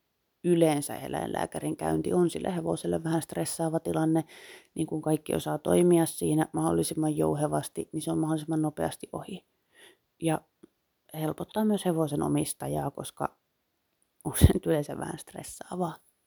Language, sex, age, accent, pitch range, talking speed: Finnish, female, 30-49, native, 145-170 Hz, 125 wpm